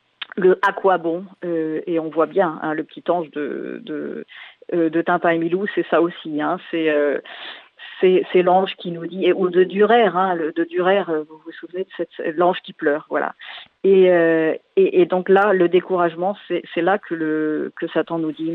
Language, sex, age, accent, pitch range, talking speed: French, female, 40-59, French, 160-185 Hz, 205 wpm